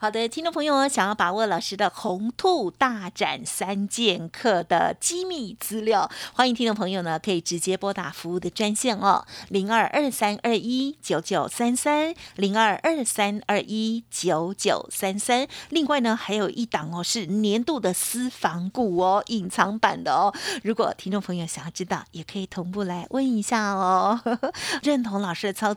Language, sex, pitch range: Chinese, female, 190-250 Hz